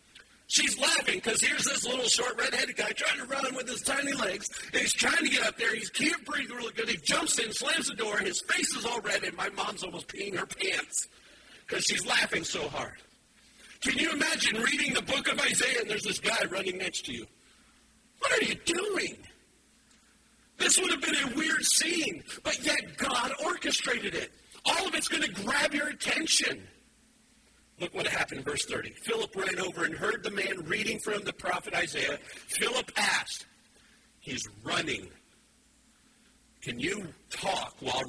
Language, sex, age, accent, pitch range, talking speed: English, male, 50-69, American, 230-295 Hz, 185 wpm